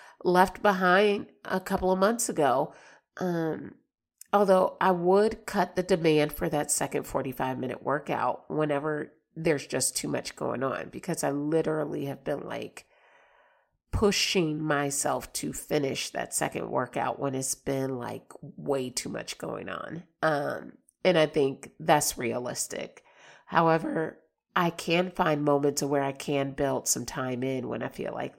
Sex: female